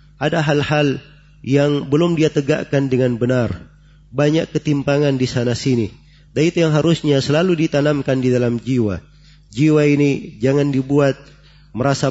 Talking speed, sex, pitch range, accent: 130 wpm, male, 130-150 Hz, native